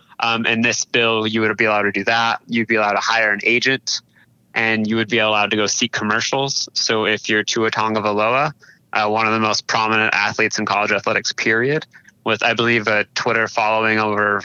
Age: 20-39